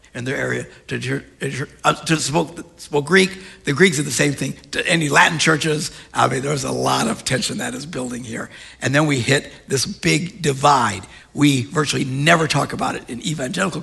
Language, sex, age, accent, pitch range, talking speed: English, male, 60-79, American, 145-215 Hz, 195 wpm